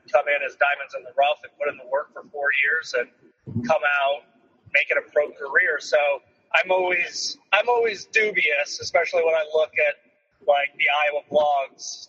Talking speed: 190 wpm